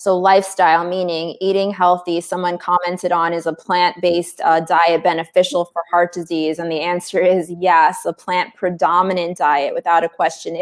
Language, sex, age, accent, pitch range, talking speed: English, female, 20-39, American, 165-205 Hz, 170 wpm